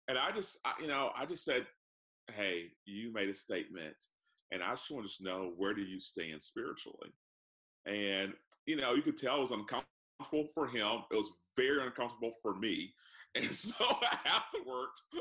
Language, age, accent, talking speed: English, 40-59, American, 180 wpm